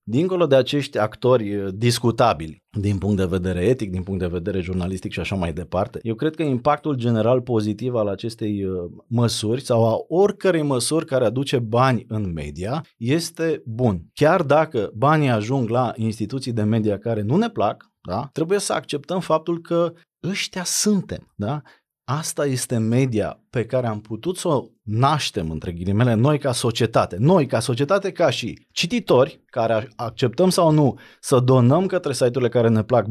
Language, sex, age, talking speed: Romanian, male, 30-49, 165 wpm